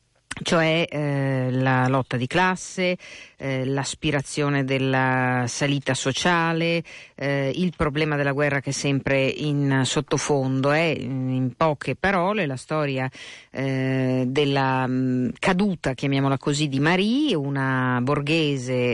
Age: 50-69